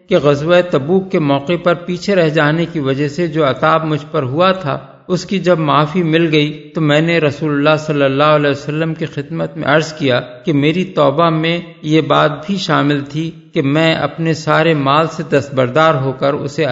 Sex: male